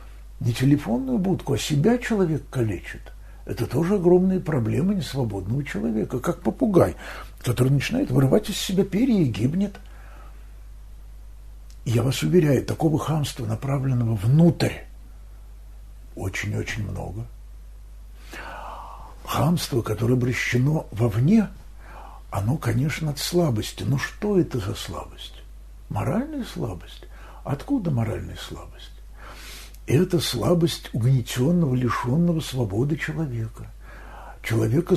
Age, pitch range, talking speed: 60-79, 115-160 Hz, 100 wpm